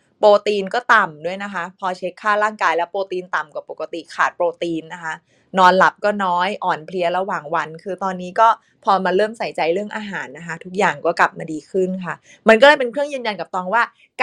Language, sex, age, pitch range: Thai, female, 20-39, 175-215 Hz